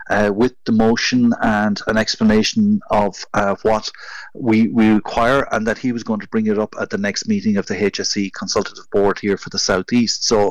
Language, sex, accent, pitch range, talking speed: English, male, Irish, 105-125 Hz, 210 wpm